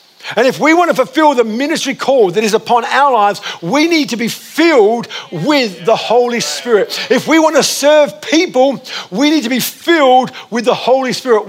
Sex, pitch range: male, 205-265 Hz